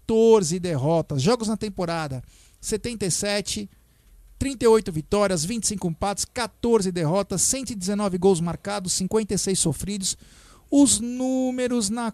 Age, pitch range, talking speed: 50-69, 185-235 Hz, 100 wpm